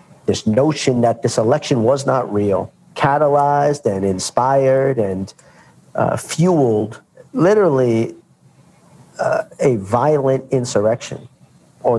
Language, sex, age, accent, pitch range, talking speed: English, male, 50-69, American, 120-165 Hz, 100 wpm